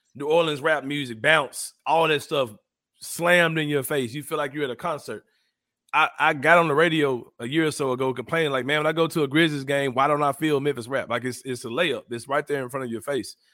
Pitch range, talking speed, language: 120-150 Hz, 260 wpm, English